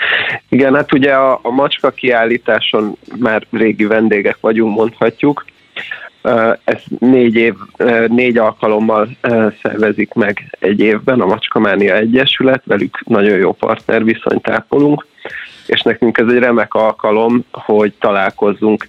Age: 30-49